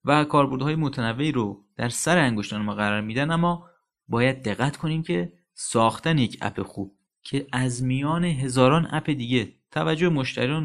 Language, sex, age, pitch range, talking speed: Persian, male, 30-49, 110-155 Hz, 150 wpm